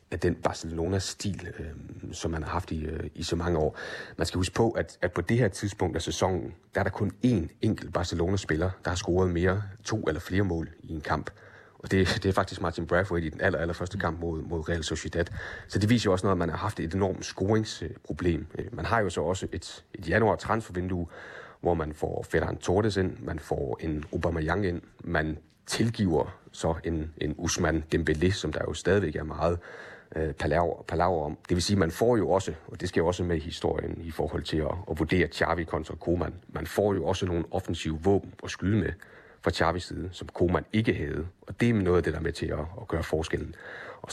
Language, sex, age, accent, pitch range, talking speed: Danish, male, 30-49, native, 80-95 Hz, 220 wpm